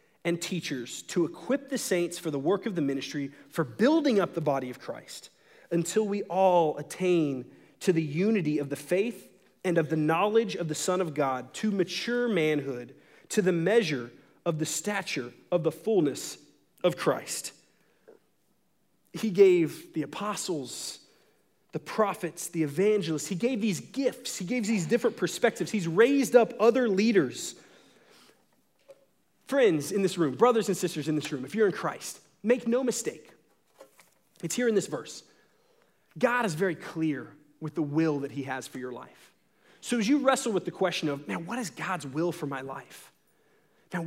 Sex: male